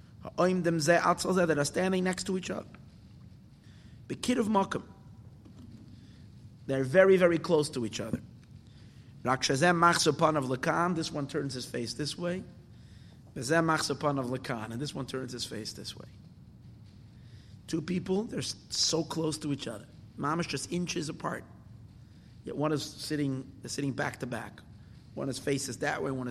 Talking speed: 135 wpm